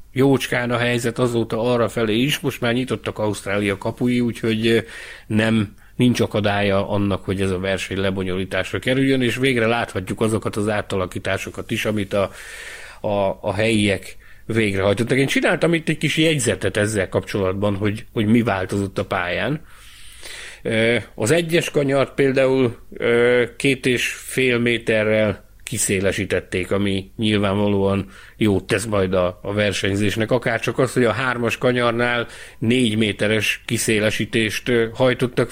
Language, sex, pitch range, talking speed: Hungarian, male, 105-125 Hz, 130 wpm